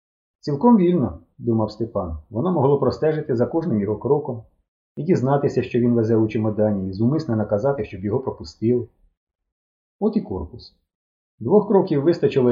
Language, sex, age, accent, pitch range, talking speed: Ukrainian, male, 30-49, native, 85-135 Hz, 145 wpm